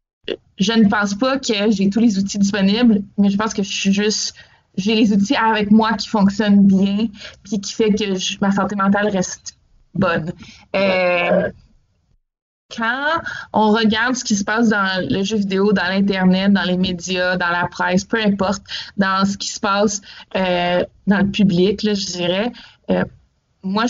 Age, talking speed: 20-39, 175 wpm